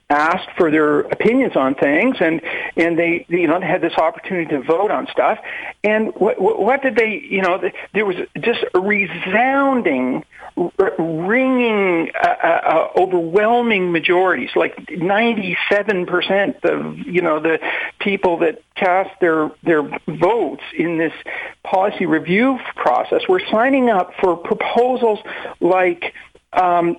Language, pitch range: English, 165-255 Hz